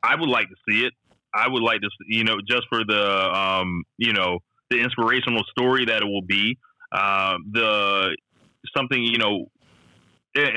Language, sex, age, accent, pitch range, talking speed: English, male, 20-39, American, 100-120 Hz, 175 wpm